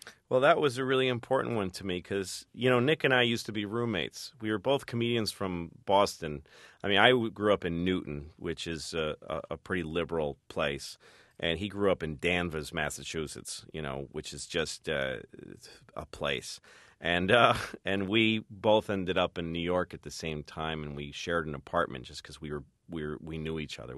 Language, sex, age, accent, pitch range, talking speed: English, male, 40-59, American, 80-115 Hz, 210 wpm